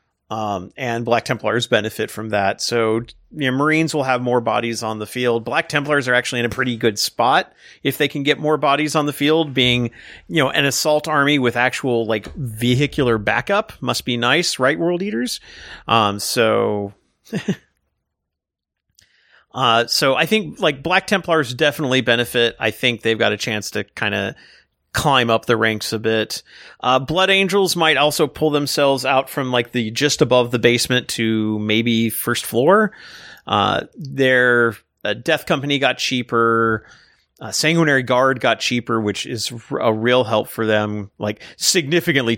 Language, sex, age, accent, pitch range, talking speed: English, male, 40-59, American, 110-145 Hz, 170 wpm